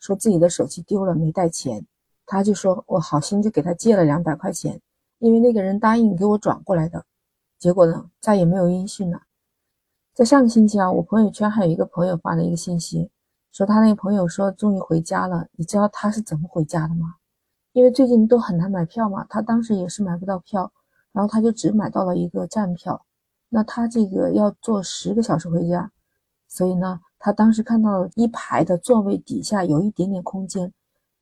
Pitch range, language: 175-220 Hz, Chinese